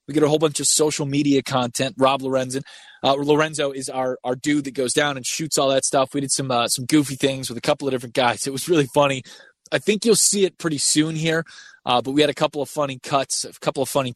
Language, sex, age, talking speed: English, male, 20-39, 265 wpm